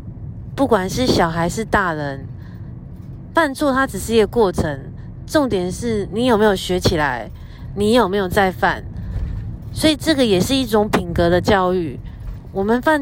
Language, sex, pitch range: Chinese, female, 170-230 Hz